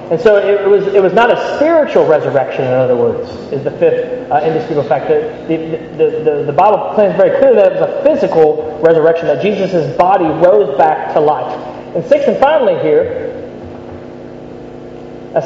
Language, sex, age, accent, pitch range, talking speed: English, male, 30-49, American, 160-255 Hz, 185 wpm